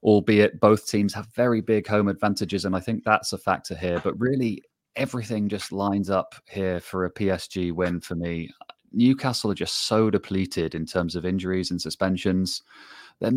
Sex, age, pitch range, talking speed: male, 30-49, 95-105 Hz, 180 wpm